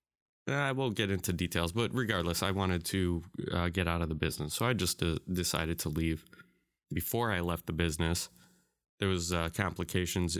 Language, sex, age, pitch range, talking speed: English, male, 20-39, 85-105 Hz, 185 wpm